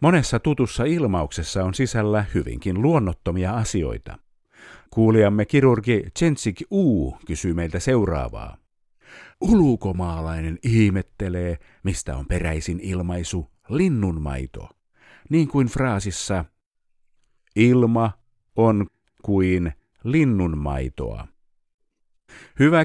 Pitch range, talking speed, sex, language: 85-120 Hz, 80 wpm, male, Finnish